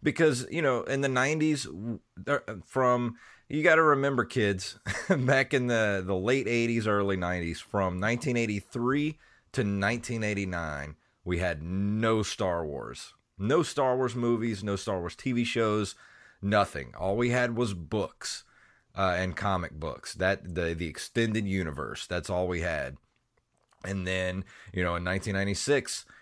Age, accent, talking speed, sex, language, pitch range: 30-49, American, 145 wpm, male, English, 90-115 Hz